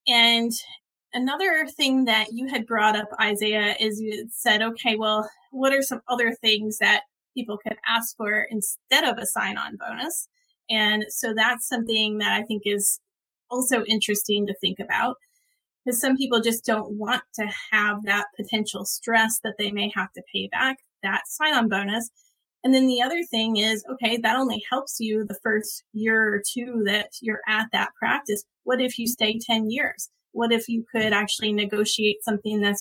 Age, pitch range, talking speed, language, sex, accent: 30-49, 210-245 Hz, 180 wpm, English, female, American